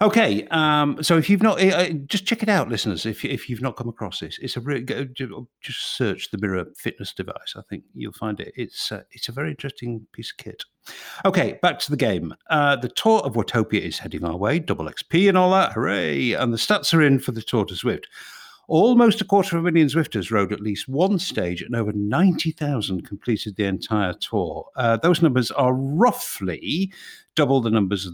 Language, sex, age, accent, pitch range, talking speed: English, male, 50-69, British, 100-165 Hz, 210 wpm